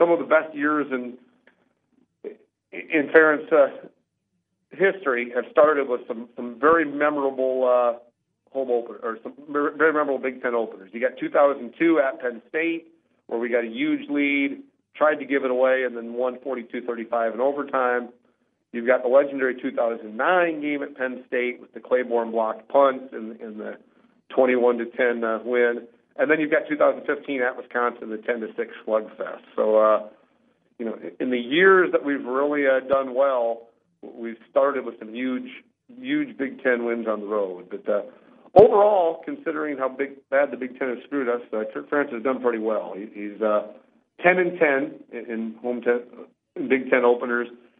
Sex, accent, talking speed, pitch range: male, American, 180 wpm, 120-150 Hz